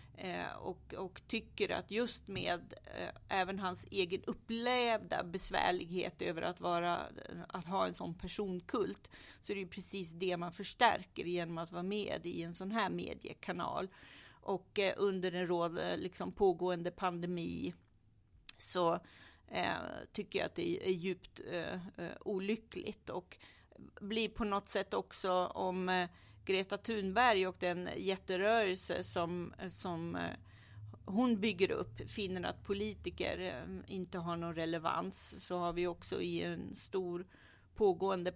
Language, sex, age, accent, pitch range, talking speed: Swedish, female, 40-59, native, 175-200 Hz, 140 wpm